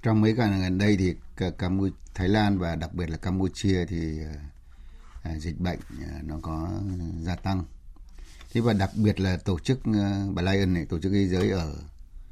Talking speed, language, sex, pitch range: 175 wpm, Vietnamese, male, 80-105 Hz